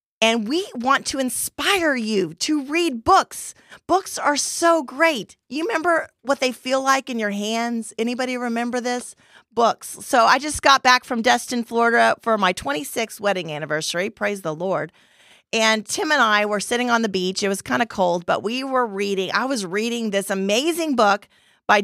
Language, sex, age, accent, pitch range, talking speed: English, female, 30-49, American, 205-260 Hz, 185 wpm